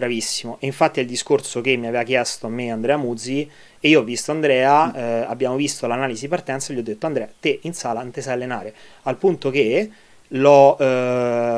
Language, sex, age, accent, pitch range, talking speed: Italian, male, 30-49, native, 115-135 Hz, 210 wpm